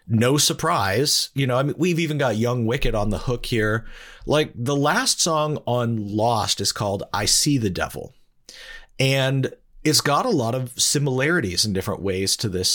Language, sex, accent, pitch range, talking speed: English, male, American, 105-145 Hz, 185 wpm